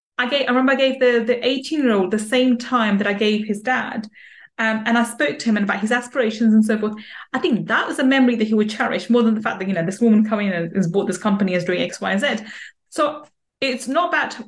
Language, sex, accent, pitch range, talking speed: English, female, British, 220-275 Hz, 270 wpm